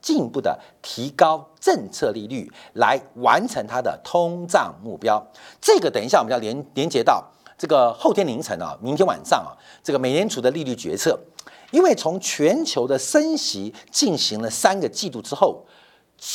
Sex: male